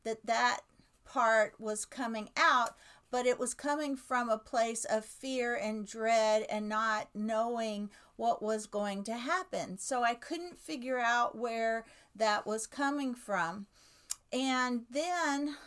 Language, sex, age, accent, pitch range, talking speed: English, female, 50-69, American, 215-255 Hz, 140 wpm